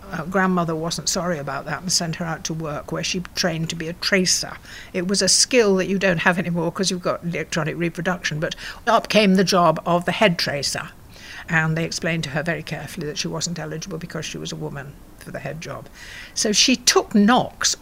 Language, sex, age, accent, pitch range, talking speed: English, female, 60-79, British, 170-220 Hz, 220 wpm